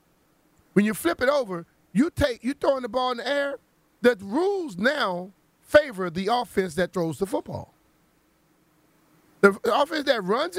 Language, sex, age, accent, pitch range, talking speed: English, male, 30-49, American, 185-270 Hz, 155 wpm